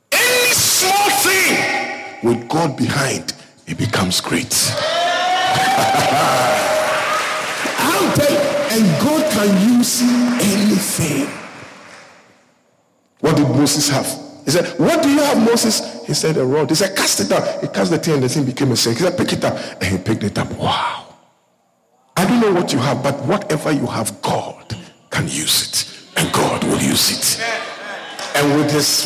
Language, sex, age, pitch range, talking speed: English, male, 50-69, 135-215 Hz, 160 wpm